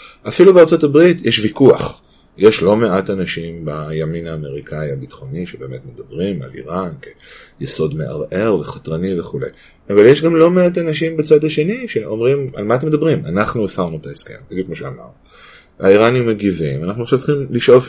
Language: Hebrew